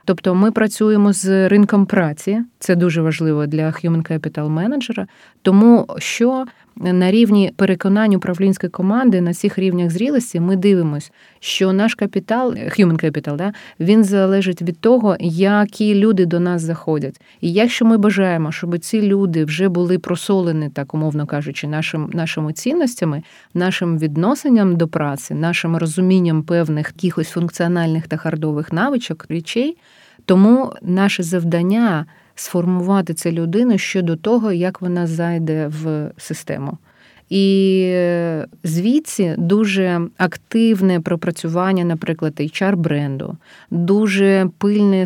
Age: 30-49